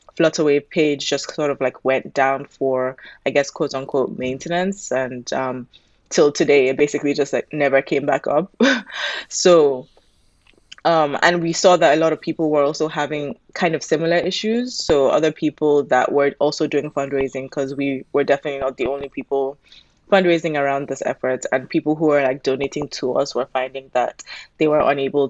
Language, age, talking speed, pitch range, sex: English, 20-39, 185 wpm, 130-150 Hz, female